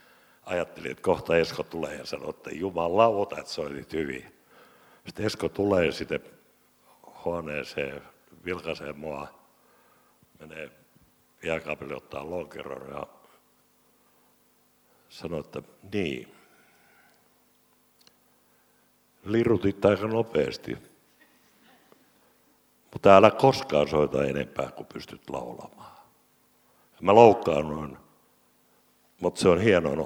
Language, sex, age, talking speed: Finnish, male, 60-79, 90 wpm